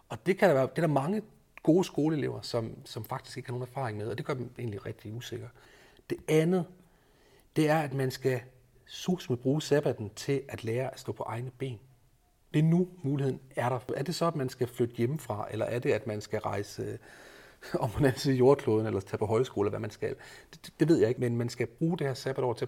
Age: 30-49